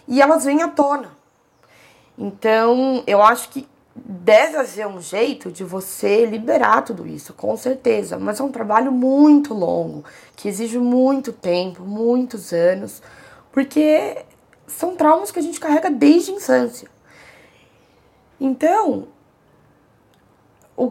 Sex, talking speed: female, 125 wpm